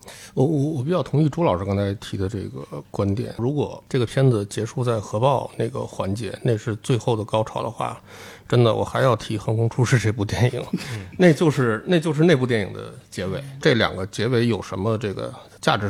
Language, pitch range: Chinese, 105-135 Hz